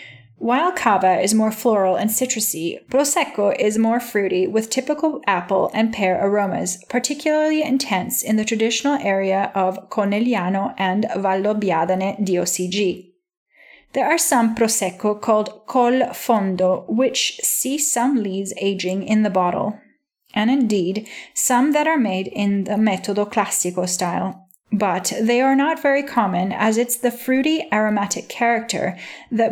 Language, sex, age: English, female, 30-49